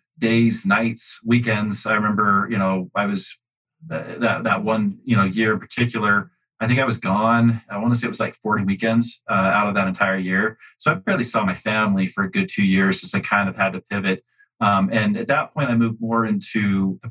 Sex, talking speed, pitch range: male, 230 wpm, 100-115 Hz